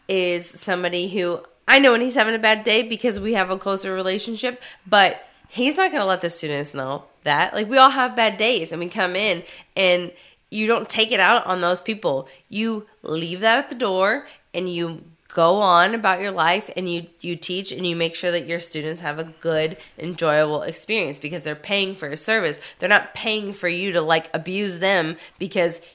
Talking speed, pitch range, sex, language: 210 wpm, 155-190 Hz, female, English